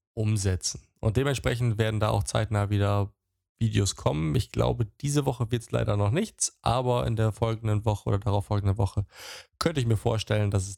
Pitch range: 100-120 Hz